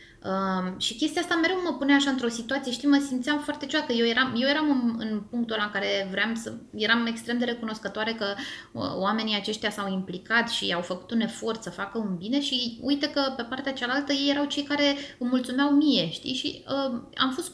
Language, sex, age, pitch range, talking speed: Romanian, female, 20-39, 215-280 Hz, 220 wpm